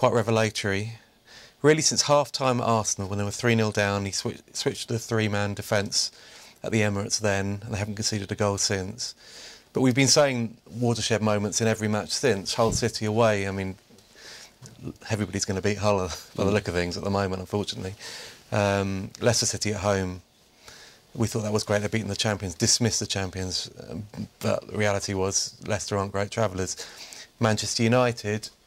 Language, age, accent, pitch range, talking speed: English, 30-49, British, 100-120 Hz, 185 wpm